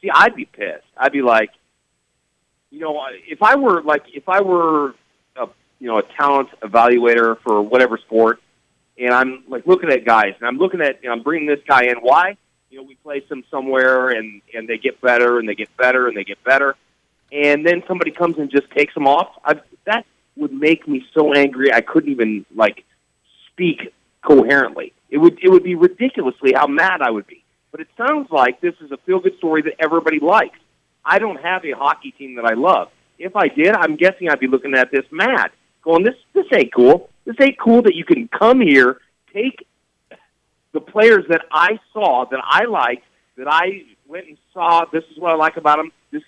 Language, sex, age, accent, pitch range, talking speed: English, male, 40-59, American, 130-185 Hz, 210 wpm